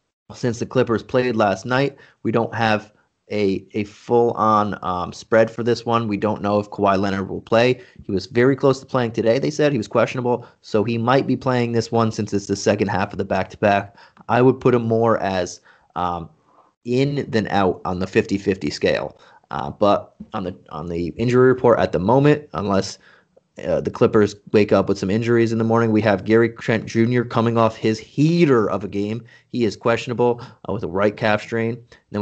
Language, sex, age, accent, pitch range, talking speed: English, male, 30-49, American, 100-125 Hz, 205 wpm